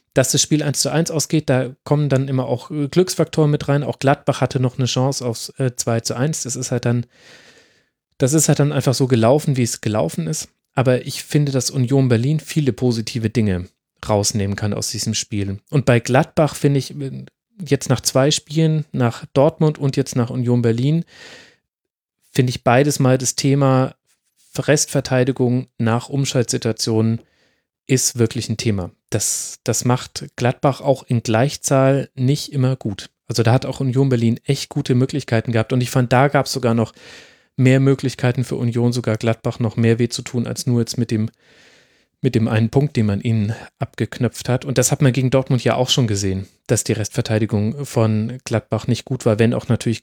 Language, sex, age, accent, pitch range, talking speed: German, male, 30-49, German, 115-140 Hz, 185 wpm